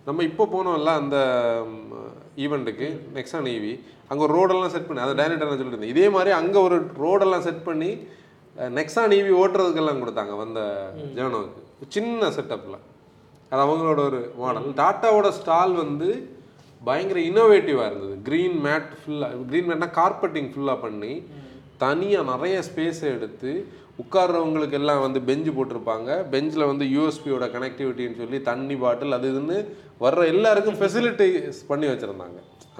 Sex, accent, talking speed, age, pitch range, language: male, native, 135 wpm, 30-49, 130-175 Hz, Tamil